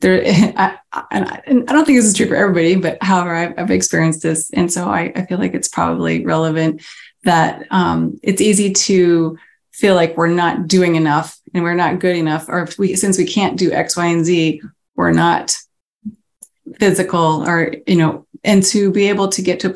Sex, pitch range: female, 175-210 Hz